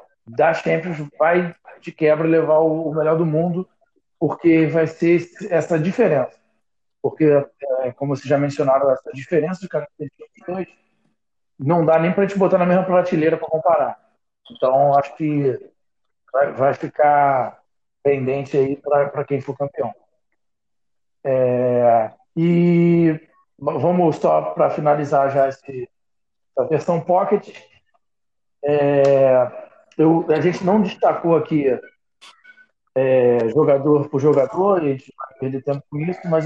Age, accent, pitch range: 40-59, Brazilian, 140-180 Hz